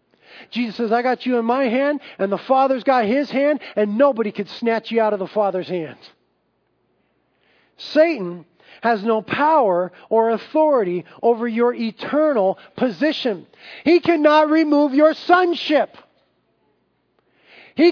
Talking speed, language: 135 wpm, English